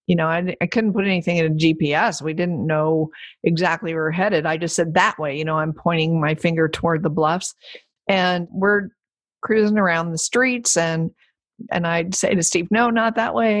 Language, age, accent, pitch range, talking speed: English, 50-69, American, 170-205 Hz, 205 wpm